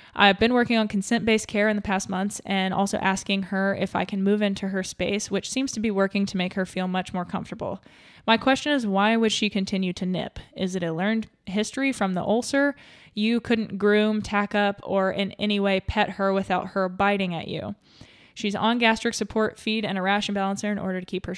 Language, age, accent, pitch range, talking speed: English, 20-39, American, 190-215 Hz, 225 wpm